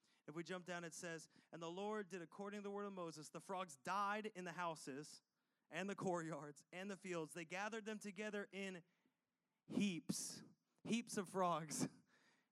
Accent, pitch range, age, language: American, 160-205 Hz, 30-49, English